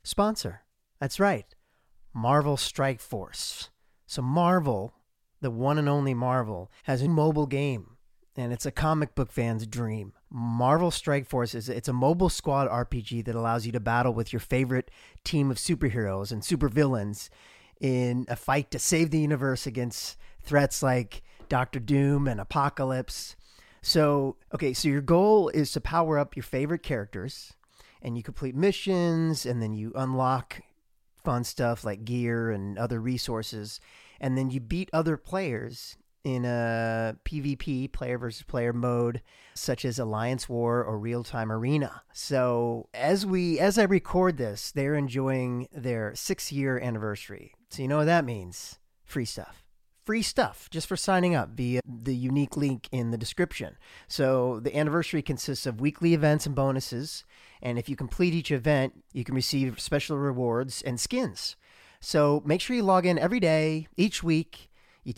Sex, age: male, 30-49